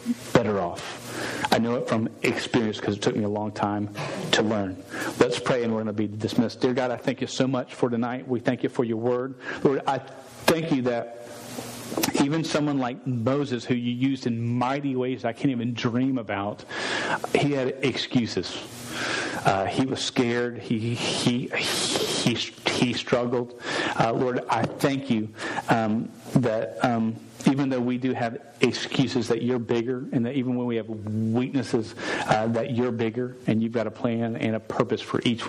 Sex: male